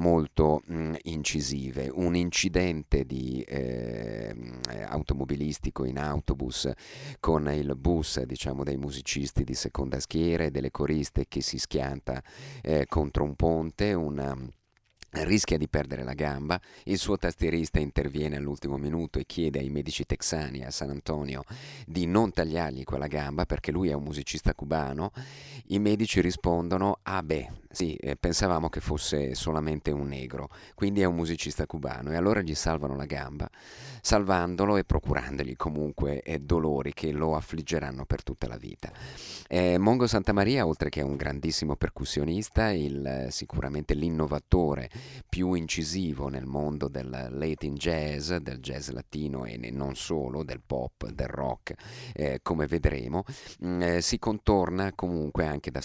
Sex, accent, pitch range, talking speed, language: male, native, 70-85 Hz, 145 wpm, Italian